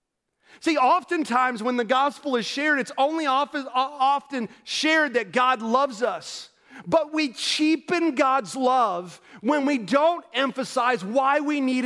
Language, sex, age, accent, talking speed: English, male, 40-59, American, 135 wpm